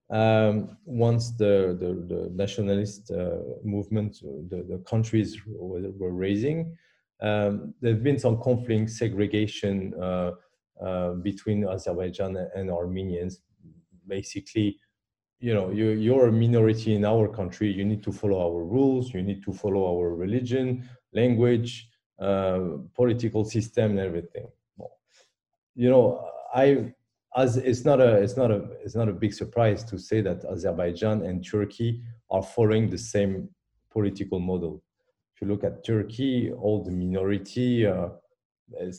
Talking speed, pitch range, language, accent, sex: 140 wpm, 95-115 Hz, English, French, male